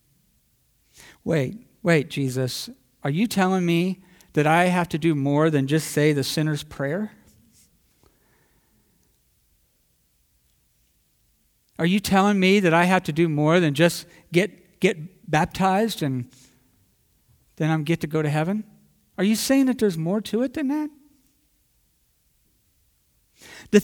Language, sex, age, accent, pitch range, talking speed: English, male, 50-69, American, 150-195 Hz, 135 wpm